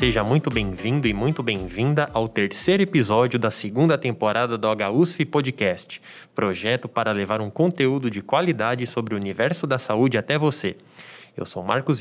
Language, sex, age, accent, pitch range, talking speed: Portuguese, male, 20-39, Brazilian, 115-160 Hz, 160 wpm